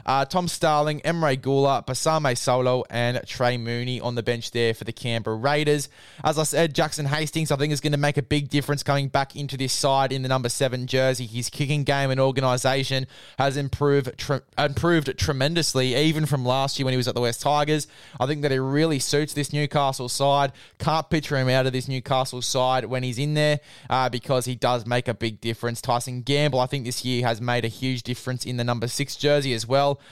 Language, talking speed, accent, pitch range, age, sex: English, 220 wpm, Australian, 125-140 Hz, 20-39, male